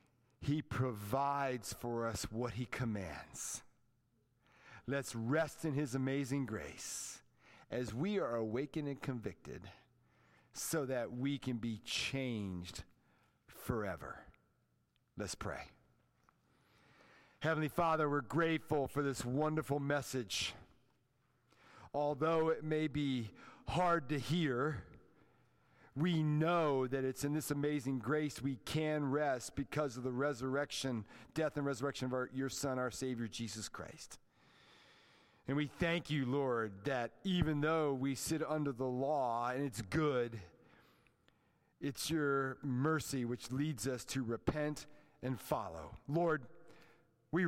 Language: English